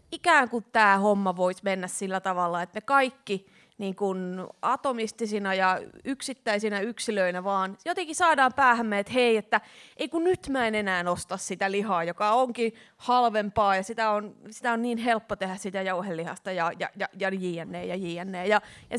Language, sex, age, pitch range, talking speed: Finnish, female, 30-49, 185-235 Hz, 170 wpm